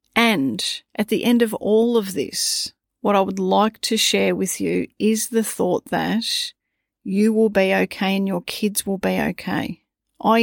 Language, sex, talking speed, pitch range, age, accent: English, female, 180 wpm, 195-225 Hz, 40-59, Australian